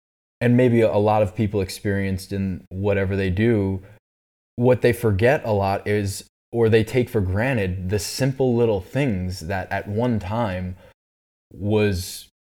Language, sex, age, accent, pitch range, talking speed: English, male, 20-39, American, 100-125 Hz, 150 wpm